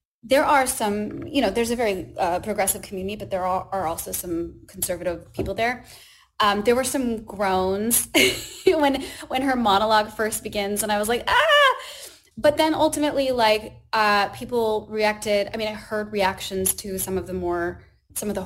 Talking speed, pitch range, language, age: 180 wpm, 185-220 Hz, English, 20-39